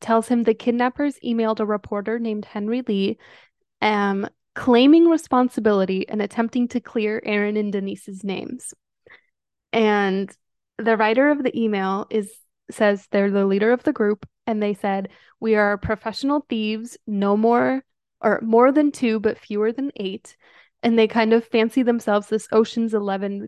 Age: 10-29